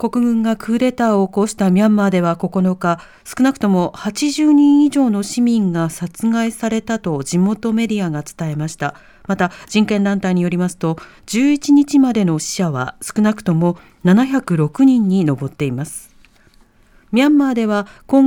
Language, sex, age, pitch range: Japanese, female, 40-59, 180-245 Hz